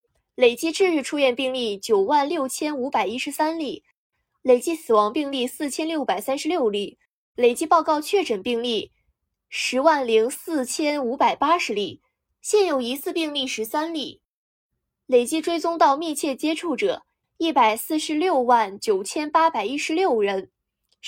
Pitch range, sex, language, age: 245-340 Hz, female, Chinese, 20-39